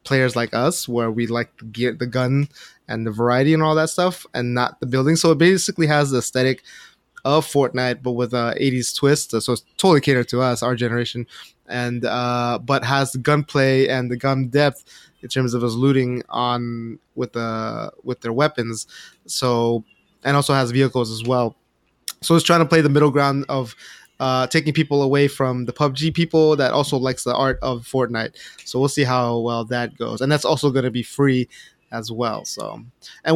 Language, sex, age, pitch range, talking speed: English, male, 20-39, 120-145 Hz, 200 wpm